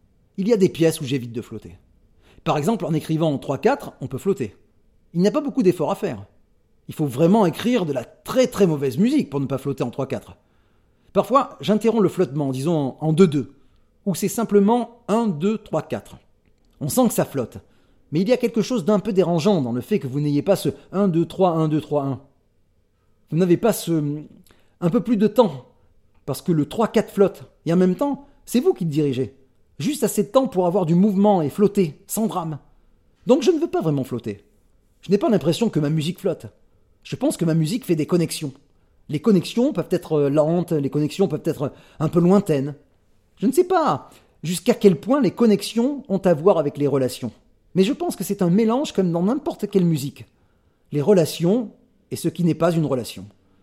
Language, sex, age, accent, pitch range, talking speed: French, male, 30-49, French, 130-205 Hz, 205 wpm